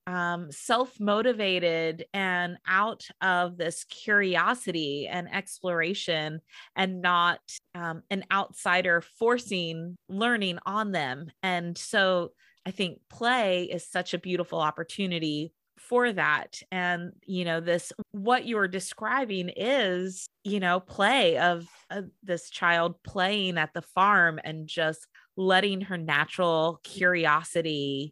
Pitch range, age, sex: 170-210 Hz, 30-49, female